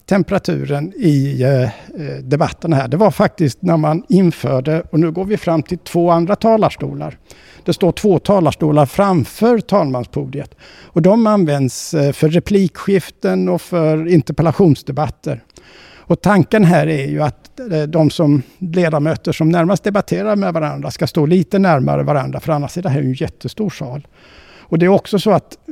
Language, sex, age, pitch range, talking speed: Swedish, male, 60-79, 140-180 Hz, 155 wpm